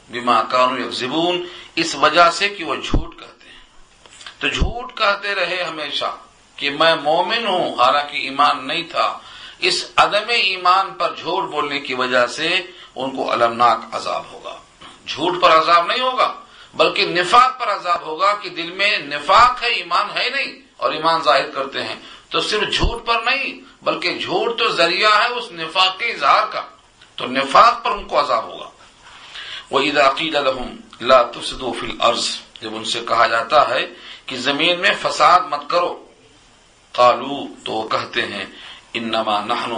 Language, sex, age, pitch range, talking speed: Urdu, male, 50-69, 140-200 Hz, 160 wpm